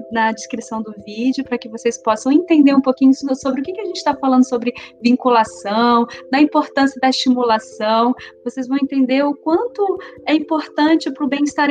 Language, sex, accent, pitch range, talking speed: Portuguese, female, Brazilian, 235-280 Hz, 175 wpm